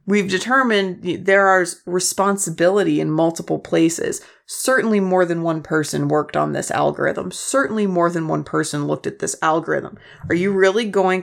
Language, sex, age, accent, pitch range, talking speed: English, female, 30-49, American, 165-215 Hz, 160 wpm